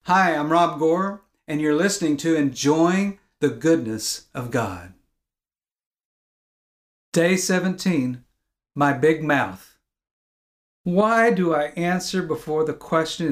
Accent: American